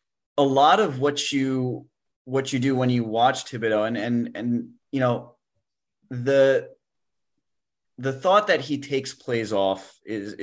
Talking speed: 150 wpm